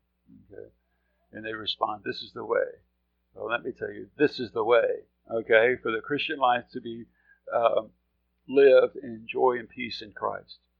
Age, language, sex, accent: 50-69, English, male, American